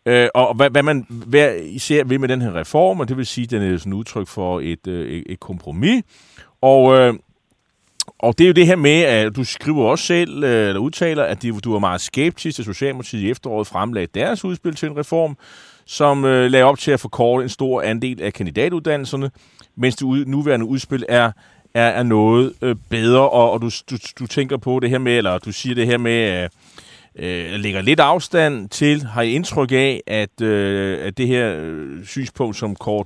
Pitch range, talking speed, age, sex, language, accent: 110-140 Hz, 190 wpm, 30-49, male, Danish, native